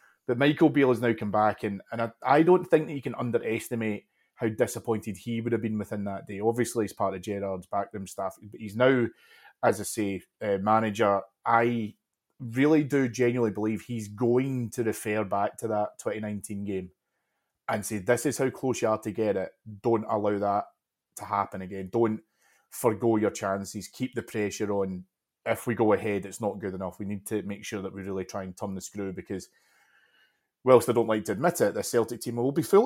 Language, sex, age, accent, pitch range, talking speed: English, male, 30-49, British, 100-115 Hz, 210 wpm